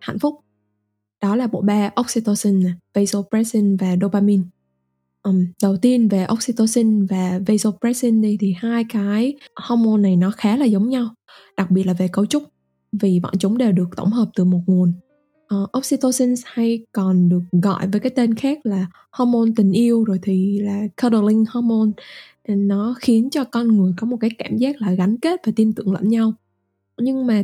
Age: 10-29